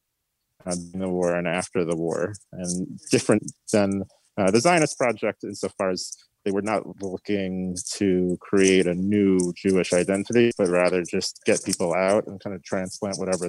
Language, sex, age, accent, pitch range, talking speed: English, male, 30-49, American, 90-115 Hz, 165 wpm